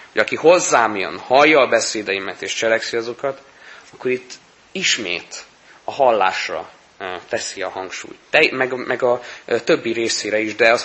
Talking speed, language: 150 wpm, Hungarian